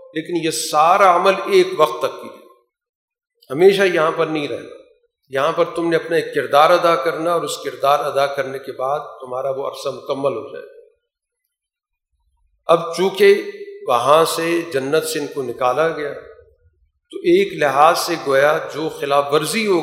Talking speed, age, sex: 165 wpm, 50-69, male